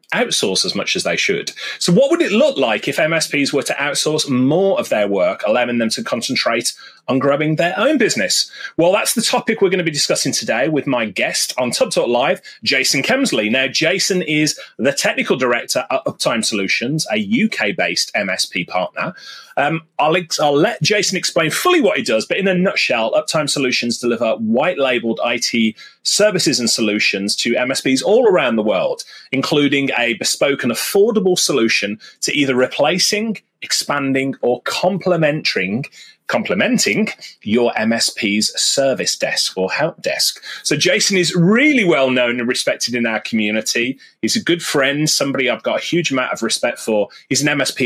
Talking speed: 170 wpm